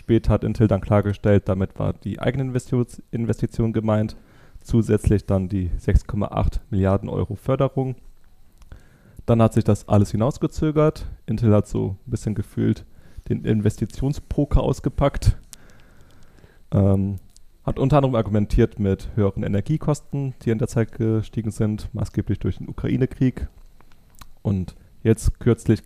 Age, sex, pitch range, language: 30-49, male, 100-130 Hz, German